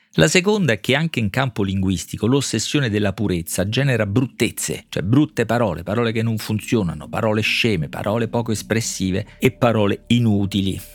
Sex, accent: male, native